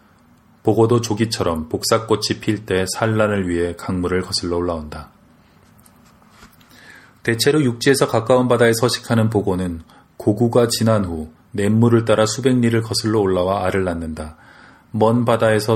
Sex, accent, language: male, native, Korean